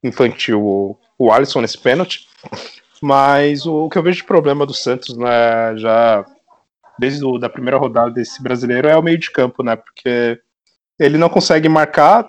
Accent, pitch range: Brazilian, 115-135 Hz